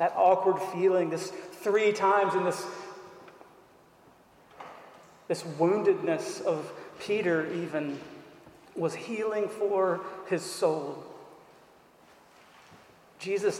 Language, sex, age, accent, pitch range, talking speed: English, male, 40-59, American, 180-200 Hz, 85 wpm